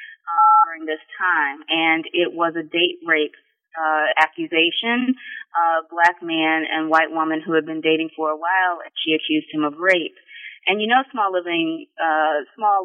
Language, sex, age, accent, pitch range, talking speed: English, female, 20-39, American, 160-205 Hz, 180 wpm